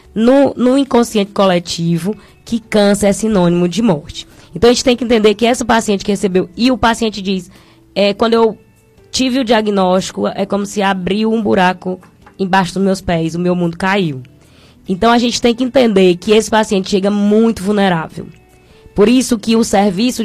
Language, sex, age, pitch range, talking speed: Portuguese, female, 10-29, 185-220 Hz, 185 wpm